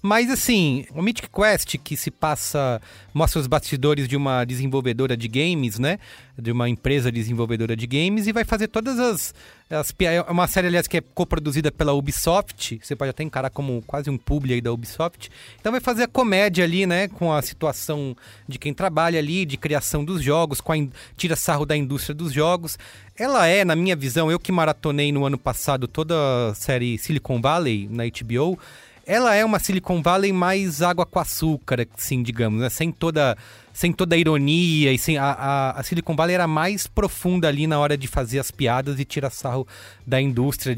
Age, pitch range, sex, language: 30-49, 125-170 Hz, male, Portuguese